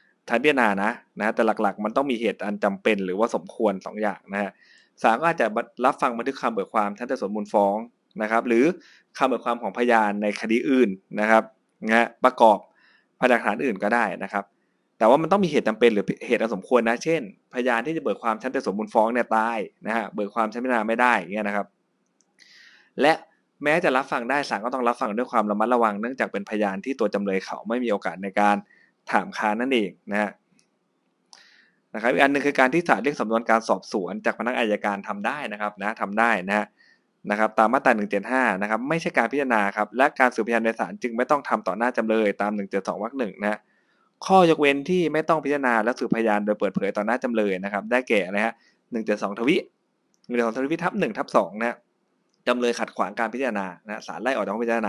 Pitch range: 105-125 Hz